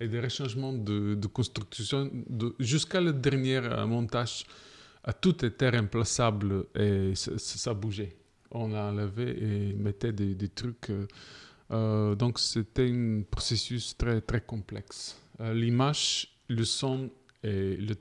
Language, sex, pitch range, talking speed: French, male, 105-130 Hz, 130 wpm